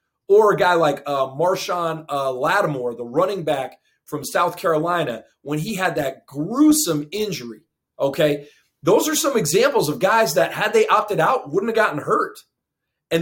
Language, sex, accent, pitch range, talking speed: English, male, American, 150-220 Hz, 170 wpm